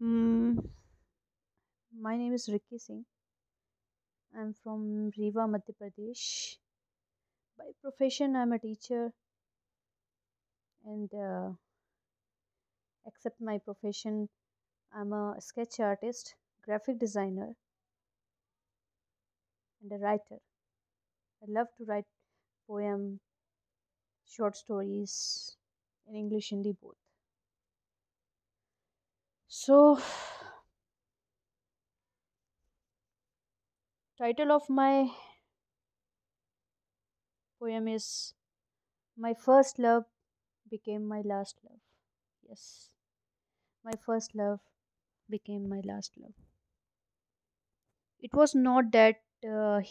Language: Hindi